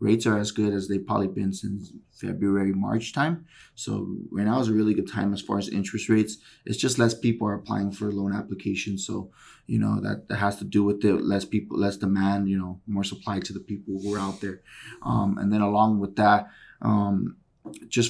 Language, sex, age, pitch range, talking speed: English, male, 20-39, 100-110 Hz, 220 wpm